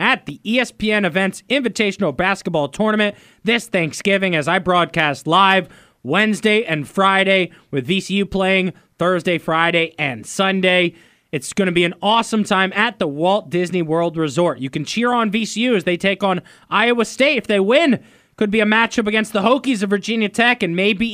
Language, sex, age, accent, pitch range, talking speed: English, male, 20-39, American, 175-220 Hz, 180 wpm